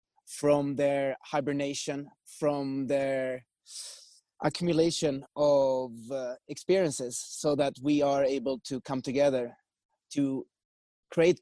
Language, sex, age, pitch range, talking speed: English, male, 30-49, 130-150 Hz, 100 wpm